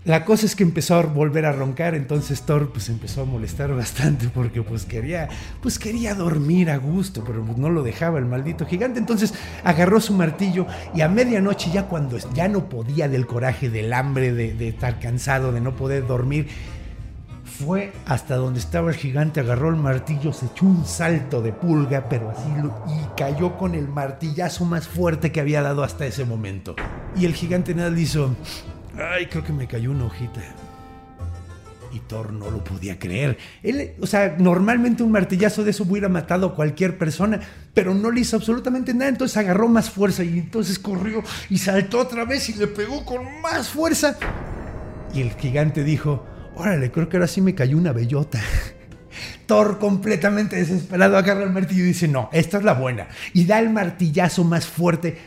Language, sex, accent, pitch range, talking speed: Spanish, male, Mexican, 125-195 Hz, 190 wpm